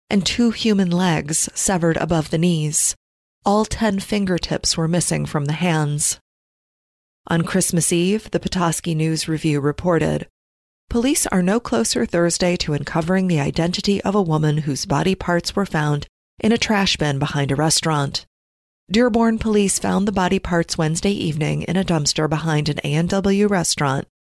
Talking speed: 155 wpm